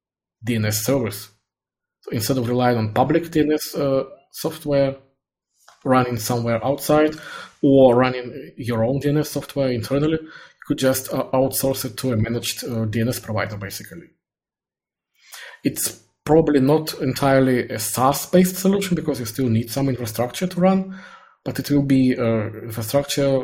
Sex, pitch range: male, 110-135 Hz